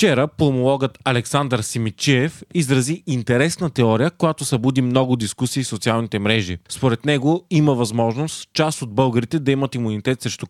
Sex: male